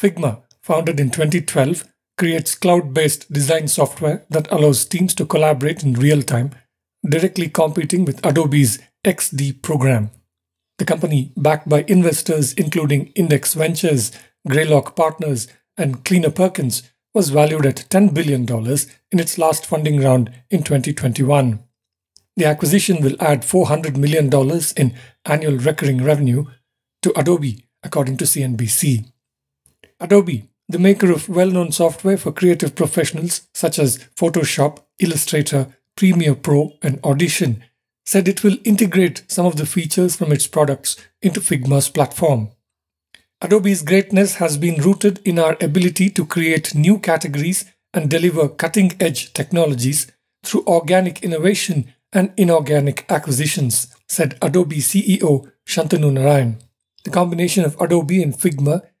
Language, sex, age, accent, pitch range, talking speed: English, male, 50-69, Indian, 140-180 Hz, 130 wpm